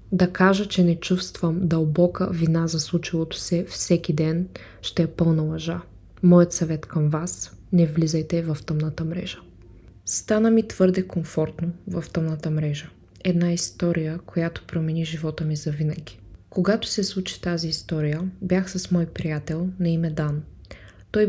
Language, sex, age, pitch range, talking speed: Bulgarian, female, 20-39, 155-185 Hz, 150 wpm